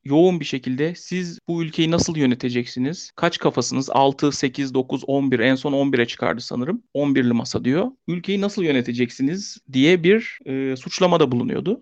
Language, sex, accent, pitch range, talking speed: Turkish, male, native, 140-190 Hz, 150 wpm